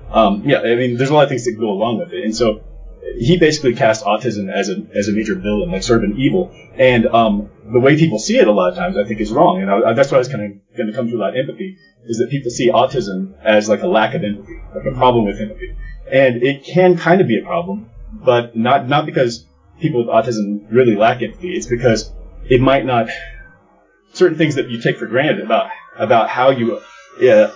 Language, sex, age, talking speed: English, male, 30-49, 240 wpm